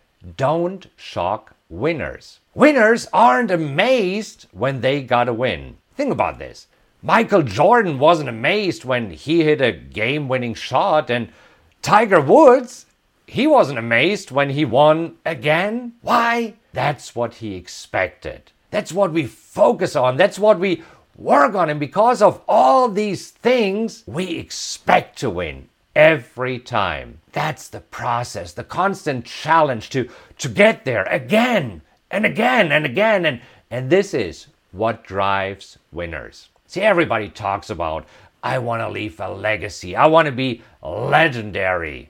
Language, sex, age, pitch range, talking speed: English, male, 50-69, 120-200 Hz, 140 wpm